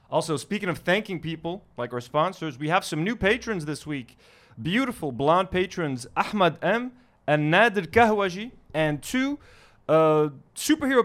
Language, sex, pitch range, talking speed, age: English, male, 135-190 Hz, 145 wpm, 30-49